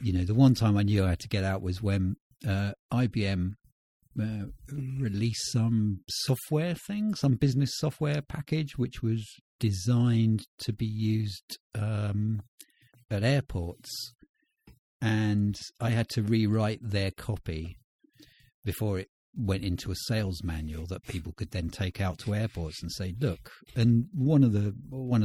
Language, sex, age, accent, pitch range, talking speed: English, male, 50-69, British, 95-125 Hz, 145 wpm